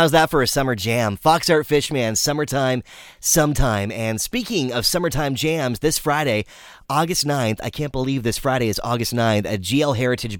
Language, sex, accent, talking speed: English, male, American, 180 wpm